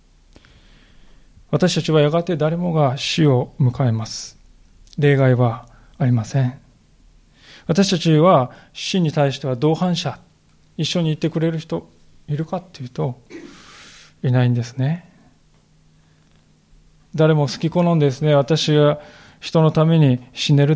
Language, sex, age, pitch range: Japanese, male, 20-39, 120-170 Hz